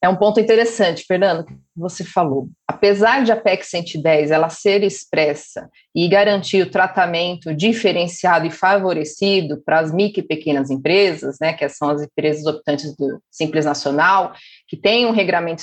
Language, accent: Portuguese, Brazilian